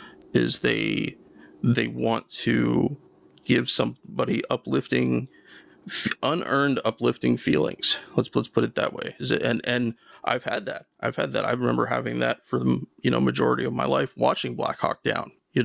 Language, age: English, 30-49